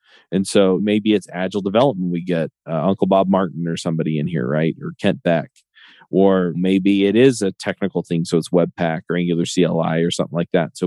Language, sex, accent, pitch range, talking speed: English, male, American, 90-105 Hz, 210 wpm